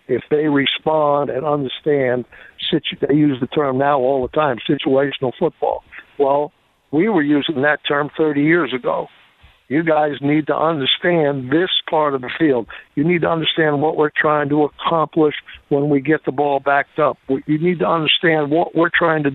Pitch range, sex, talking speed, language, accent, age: 140-180 Hz, male, 180 wpm, English, American, 60-79